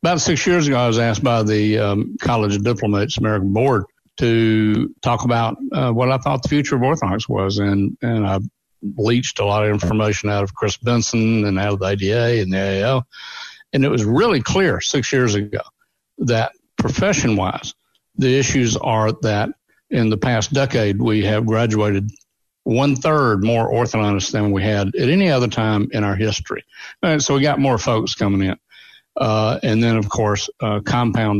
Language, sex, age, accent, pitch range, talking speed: English, male, 60-79, American, 100-125 Hz, 185 wpm